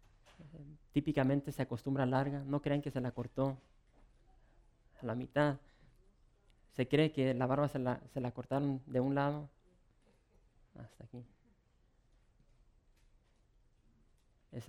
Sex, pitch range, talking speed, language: male, 120-145 Hz, 125 wpm, English